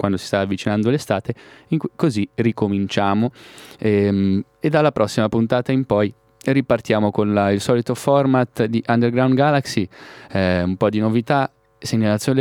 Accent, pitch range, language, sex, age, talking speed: native, 110-135 Hz, Italian, male, 20-39, 145 wpm